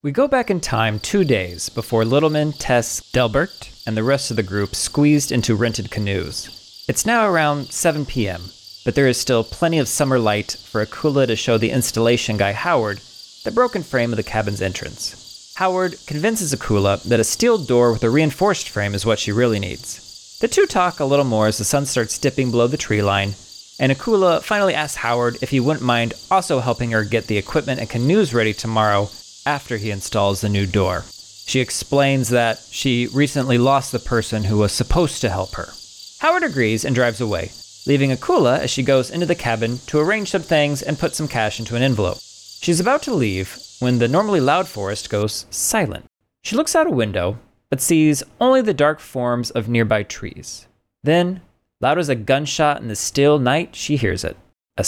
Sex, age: male, 30-49